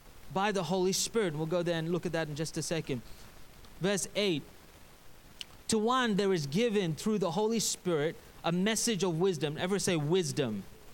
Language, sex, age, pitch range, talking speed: English, male, 30-49, 155-220 Hz, 180 wpm